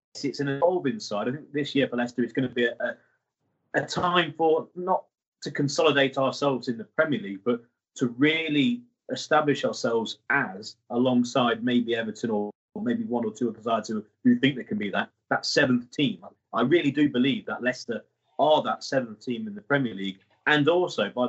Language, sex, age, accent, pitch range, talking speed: English, male, 30-49, British, 120-150 Hz, 195 wpm